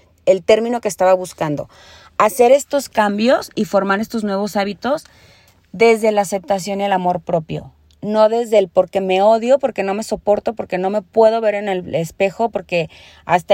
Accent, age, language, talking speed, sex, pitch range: Mexican, 30-49, Spanish, 175 wpm, female, 180-230 Hz